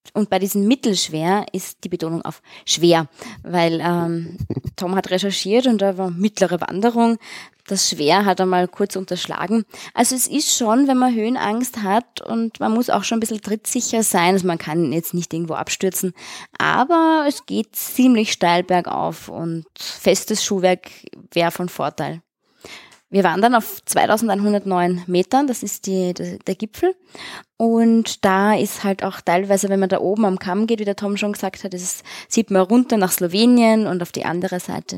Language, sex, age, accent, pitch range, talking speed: German, female, 20-39, German, 175-220 Hz, 175 wpm